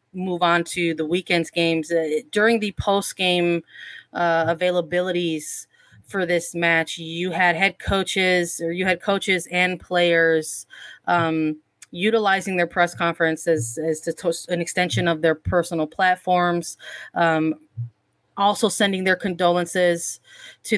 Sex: female